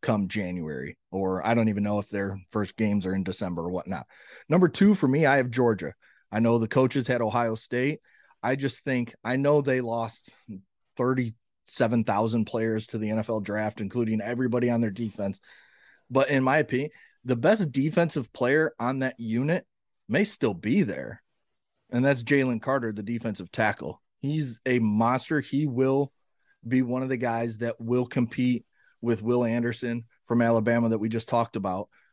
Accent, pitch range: American, 115-140 Hz